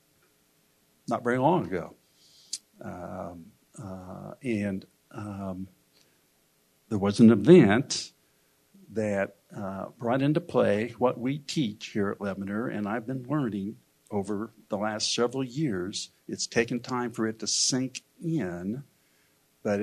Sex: male